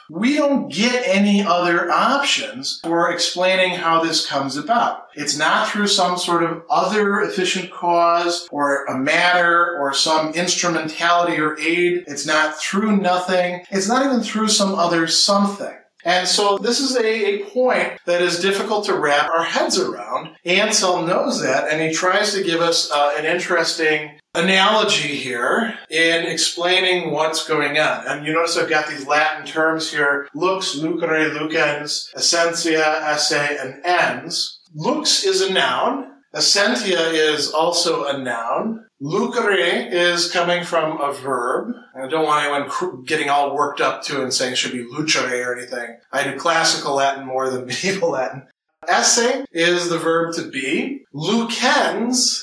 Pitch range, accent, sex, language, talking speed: 155-195 Hz, American, male, English, 155 wpm